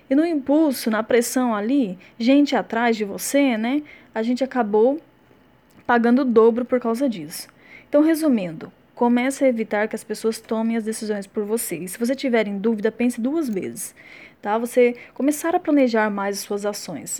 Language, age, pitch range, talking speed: Portuguese, 10-29, 215-260 Hz, 180 wpm